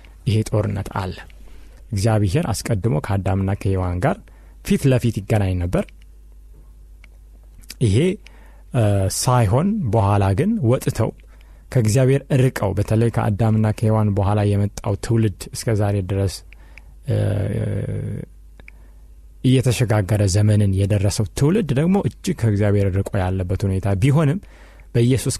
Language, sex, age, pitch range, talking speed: Amharic, male, 30-49, 95-125 Hz, 90 wpm